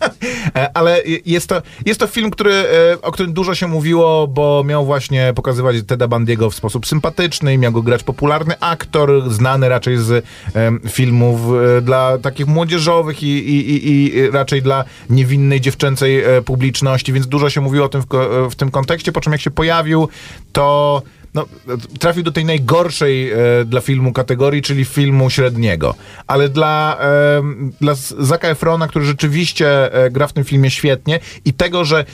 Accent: native